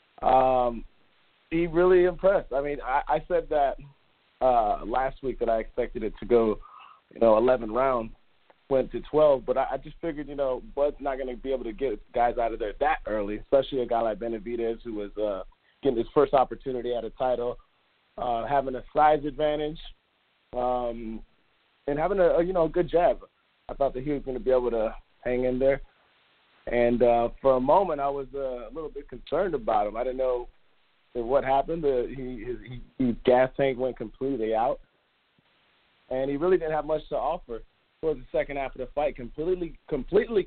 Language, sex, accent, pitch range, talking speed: English, male, American, 115-145 Hz, 200 wpm